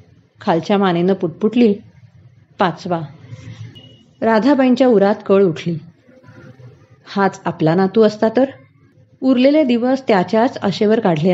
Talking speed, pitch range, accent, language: 95 wpm, 155-225 Hz, native, Marathi